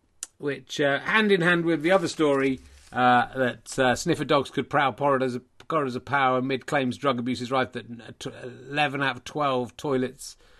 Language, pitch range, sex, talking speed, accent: English, 115-150 Hz, male, 175 wpm, British